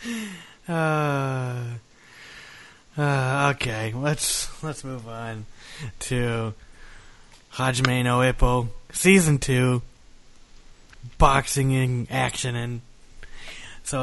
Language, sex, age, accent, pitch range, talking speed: English, male, 20-39, American, 120-160 Hz, 75 wpm